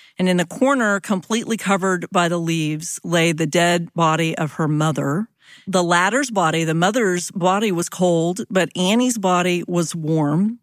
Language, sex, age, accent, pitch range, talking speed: English, female, 40-59, American, 170-205 Hz, 165 wpm